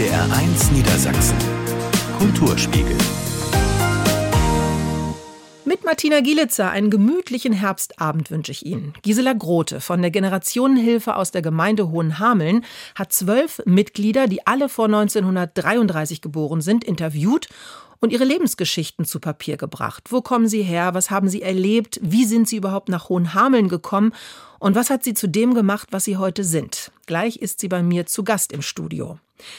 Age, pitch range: 40-59, 165-225 Hz